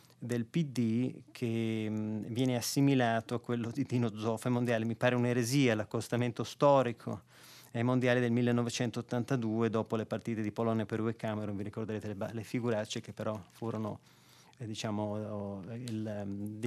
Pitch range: 105-125 Hz